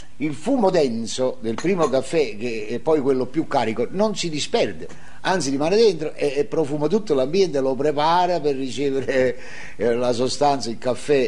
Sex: male